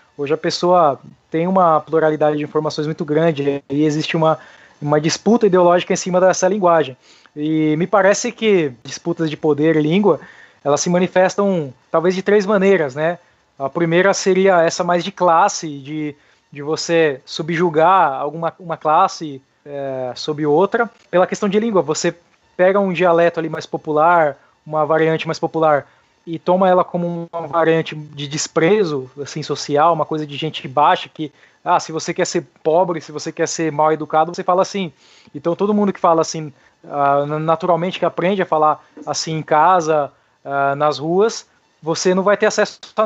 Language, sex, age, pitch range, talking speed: Portuguese, male, 20-39, 155-185 Hz, 170 wpm